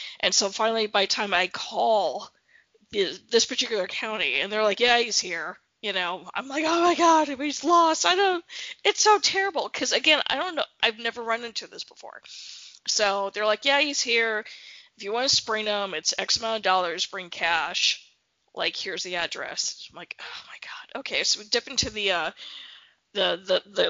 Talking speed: 200 wpm